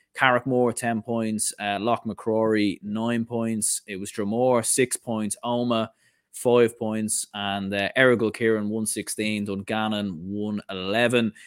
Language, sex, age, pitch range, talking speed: English, male, 20-39, 110-125 Hz, 125 wpm